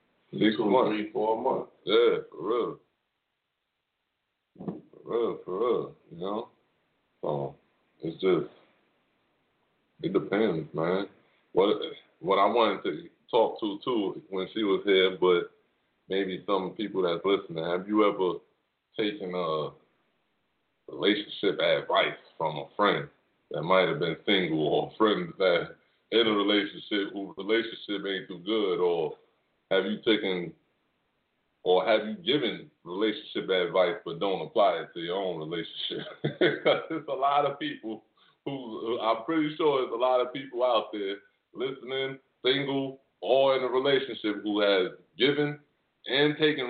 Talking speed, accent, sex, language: 140 wpm, American, male, English